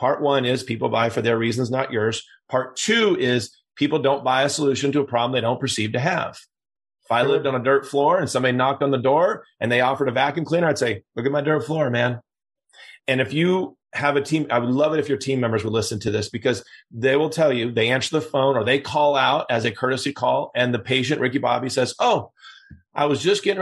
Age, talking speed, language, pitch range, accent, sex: 30-49, 250 wpm, English, 120-145 Hz, American, male